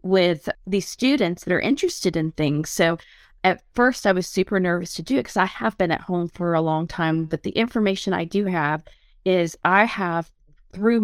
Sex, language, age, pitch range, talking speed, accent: female, English, 30-49, 170-205 Hz, 205 wpm, American